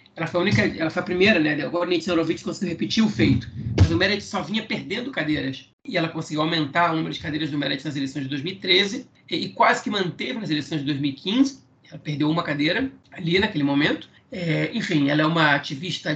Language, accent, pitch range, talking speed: Portuguese, Brazilian, 150-185 Hz, 215 wpm